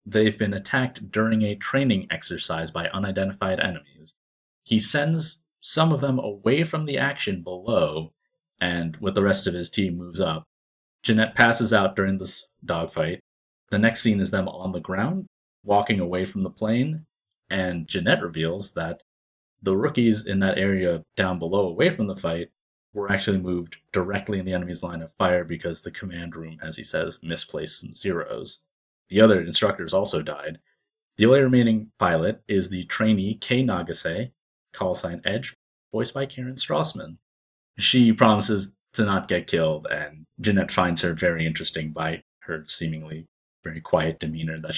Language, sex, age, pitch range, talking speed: English, male, 30-49, 85-110 Hz, 165 wpm